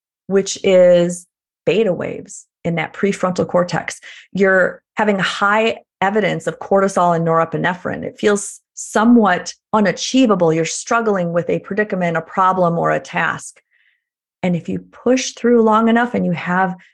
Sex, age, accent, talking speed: female, 30-49, American, 140 wpm